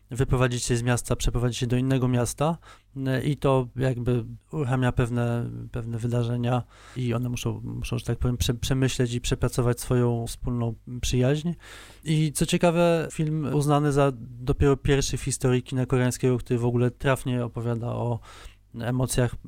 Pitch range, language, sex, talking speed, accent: 120-135 Hz, Polish, male, 150 wpm, native